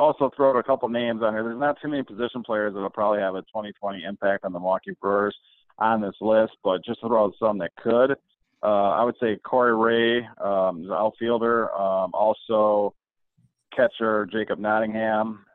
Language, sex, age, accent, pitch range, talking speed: English, male, 50-69, American, 100-115 Hz, 190 wpm